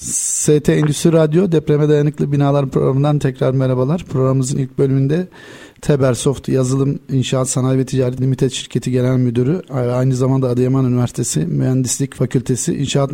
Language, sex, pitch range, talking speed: Turkish, male, 130-155 Hz, 135 wpm